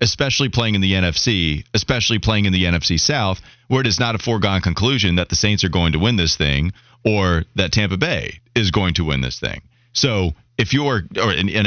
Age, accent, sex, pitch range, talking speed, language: 30-49, American, male, 95-130 Hz, 215 wpm, English